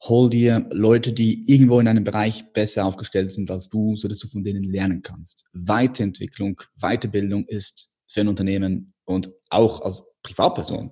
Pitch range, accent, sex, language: 100-125 Hz, German, male, German